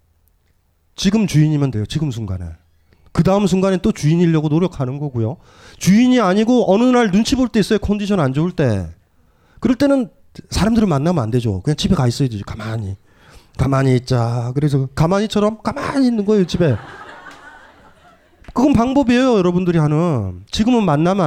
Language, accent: Korean, native